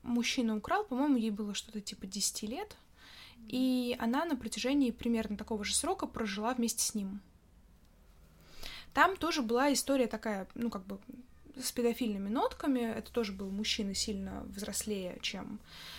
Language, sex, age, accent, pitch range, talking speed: Russian, female, 20-39, native, 210-265 Hz, 145 wpm